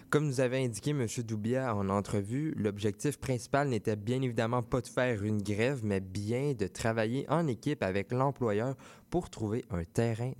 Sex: male